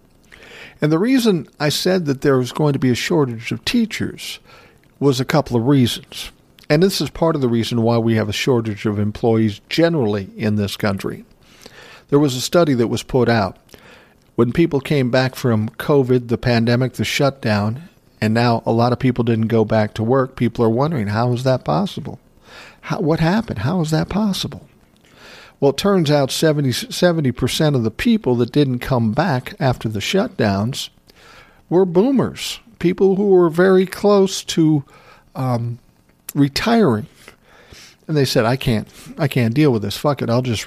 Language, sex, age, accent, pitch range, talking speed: English, male, 50-69, American, 115-160 Hz, 175 wpm